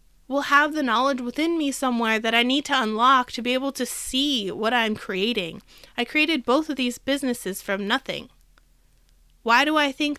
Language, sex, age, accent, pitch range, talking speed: English, female, 20-39, American, 230-305 Hz, 190 wpm